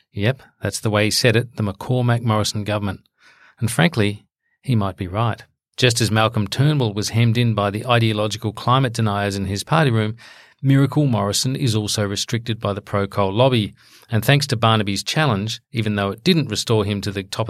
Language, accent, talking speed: English, Australian, 185 wpm